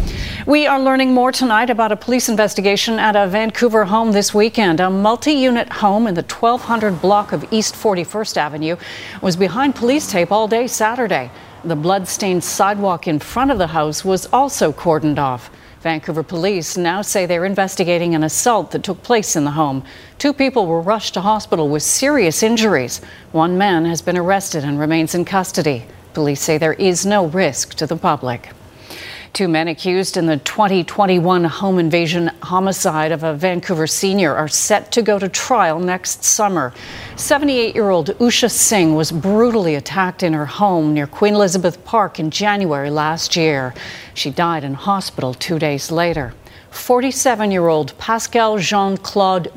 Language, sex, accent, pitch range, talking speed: English, female, American, 160-215 Hz, 160 wpm